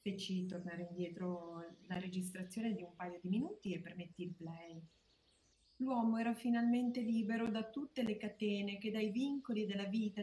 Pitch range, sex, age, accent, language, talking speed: 180-240 Hz, female, 40-59, native, Italian, 160 wpm